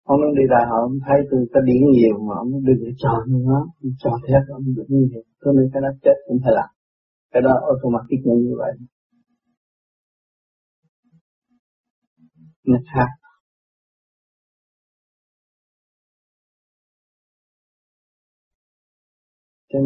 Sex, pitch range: male, 120-145 Hz